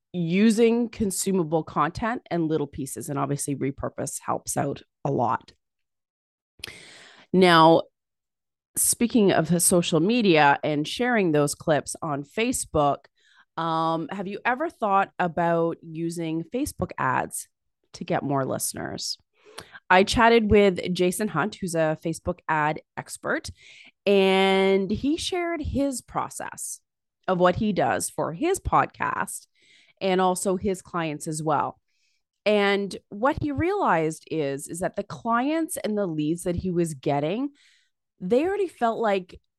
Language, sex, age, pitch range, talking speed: English, female, 30-49, 165-220 Hz, 130 wpm